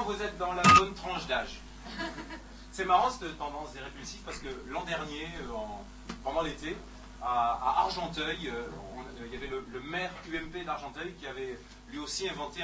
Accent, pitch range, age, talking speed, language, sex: French, 135-190 Hz, 30-49, 180 wpm, French, male